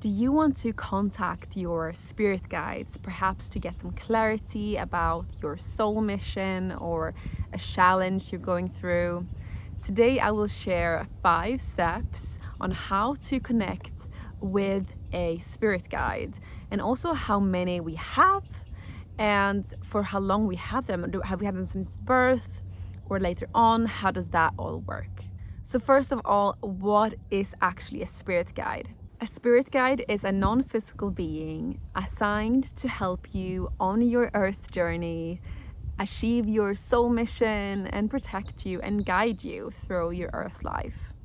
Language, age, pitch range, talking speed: English, 20-39, 165-225 Hz, 150 wpm